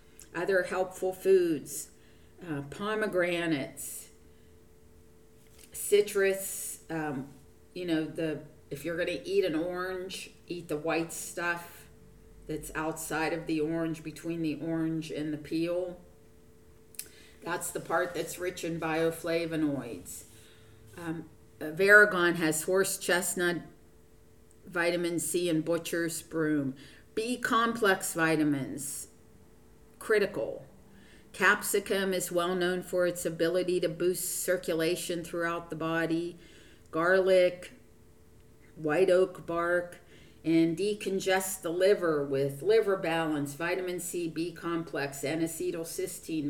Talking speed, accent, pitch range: 105 wpm, American, 155-185 Hz